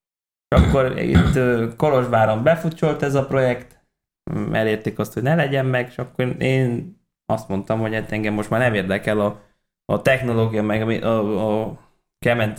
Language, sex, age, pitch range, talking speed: Hungarian, male, 20-39, 110-135 Hz, 155 wpm